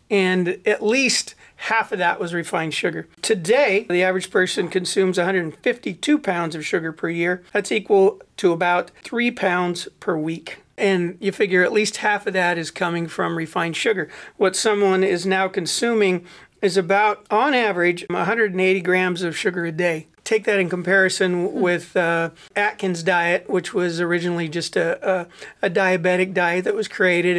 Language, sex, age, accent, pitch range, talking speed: English, male, 40-59, American, 175-195 Hz, 165 wpm